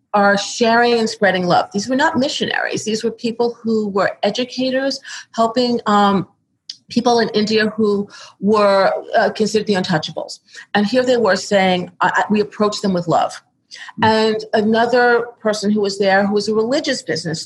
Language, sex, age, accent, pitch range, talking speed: English, female, 40-59, American, 165-225 Hz, 165 wpm